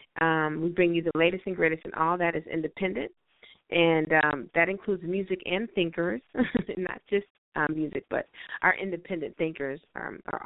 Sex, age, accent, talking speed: female, 30-49, American, 160 wpm